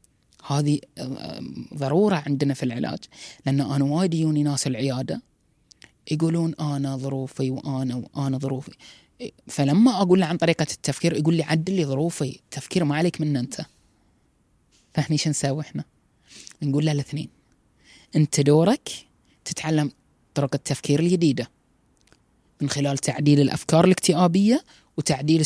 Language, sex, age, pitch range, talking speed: Arabic, female, 20-39, 140-180 Hz, 115 wpm